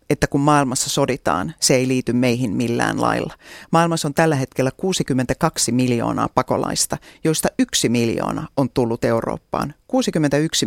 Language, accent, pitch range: Finnish, native, 125-150 Hz